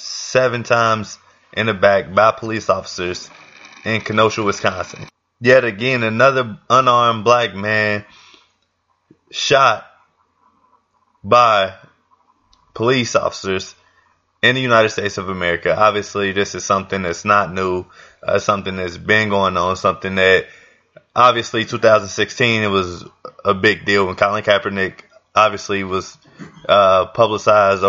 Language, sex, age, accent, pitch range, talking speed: English, male, 20-39, American, 95-110 Hz, 120 wpm